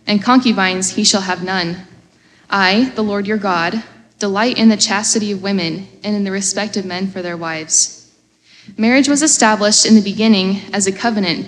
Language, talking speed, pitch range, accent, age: English, 185 wpm, 185-215 Hz, American, 10-29